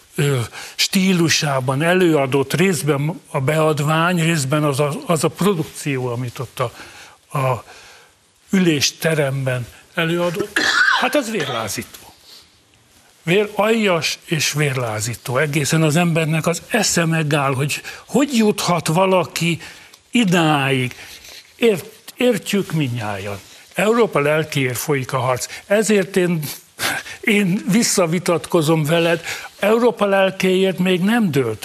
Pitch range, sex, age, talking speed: 145-190 Hz, male, 60-79, 95 wpm